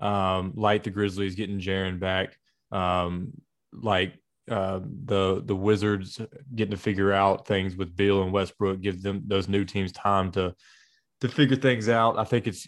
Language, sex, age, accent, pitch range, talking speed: English, male, 20-39, American, 95-110 Hz, 170 wpm